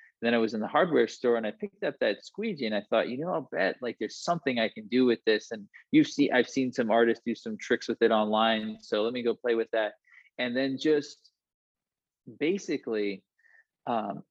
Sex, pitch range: male, 110-140 Hz